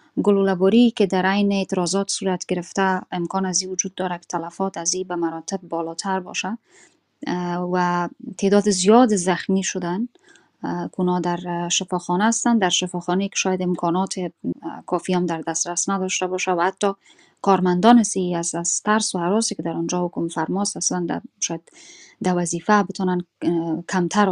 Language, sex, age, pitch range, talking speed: Persian, female, 20-39, 175-195 Hz, 145 wpm